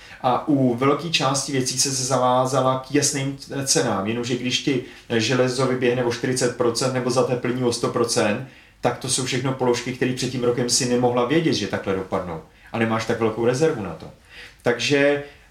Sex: male